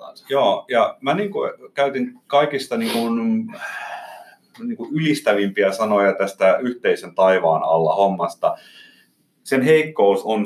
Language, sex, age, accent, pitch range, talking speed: Finnish, male, 30-49, native, 95-150 Hz, 115 wpm